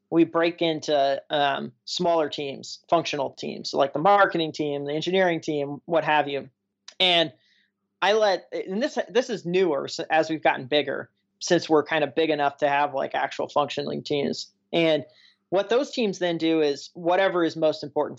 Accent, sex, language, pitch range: American, male, English, 145-175 Hz